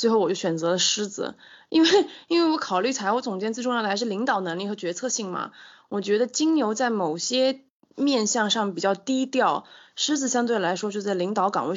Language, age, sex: Chinese, 20-39, female